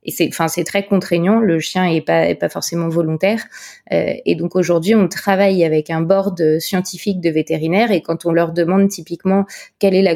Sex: female